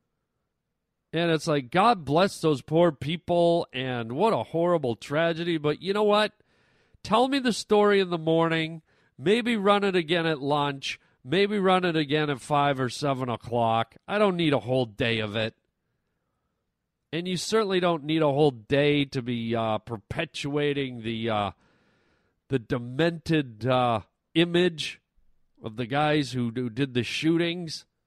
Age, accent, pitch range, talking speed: 40-59, American, 120-165 Hz, 155 wpm